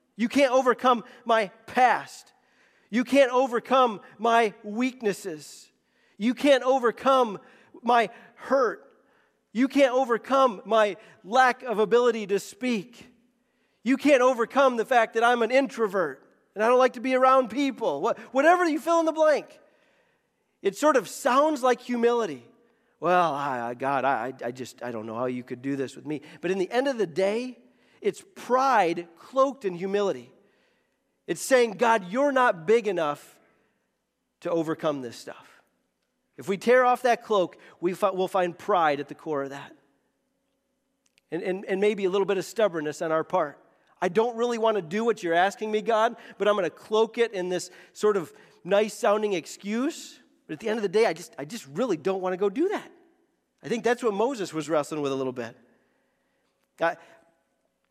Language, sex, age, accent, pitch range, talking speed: English, male, 40-59, American, 185-255 Hz, 175 wpm